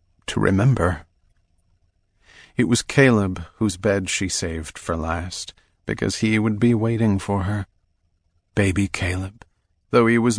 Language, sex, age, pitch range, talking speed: English, male, 40-59, 90-115 Hz, 135 wpm